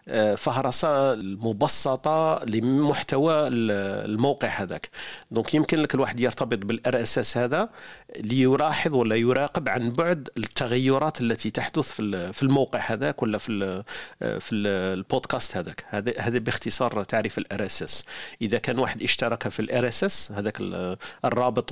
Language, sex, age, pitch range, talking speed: Arabic, male, 40-59, 105-140 Hz, 115 wpm